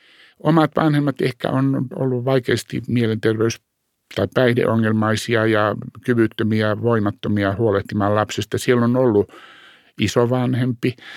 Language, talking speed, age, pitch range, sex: Finnish, 95 wpm, 60-79, 100-125 Hz, male